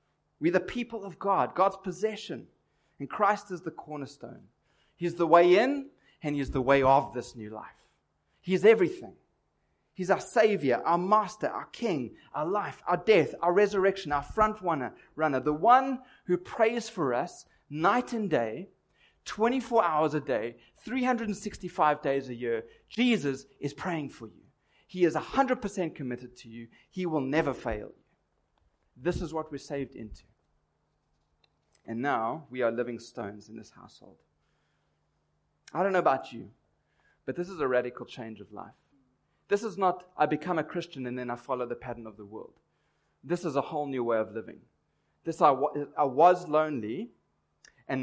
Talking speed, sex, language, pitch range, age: 170 wpm, male, English, 120-190 Hz, 30-49